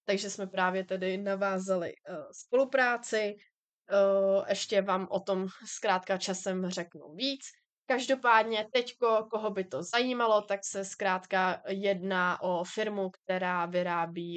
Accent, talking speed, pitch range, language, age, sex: native, 115 wpm, 180-210 Hz, Czech, 20-39, female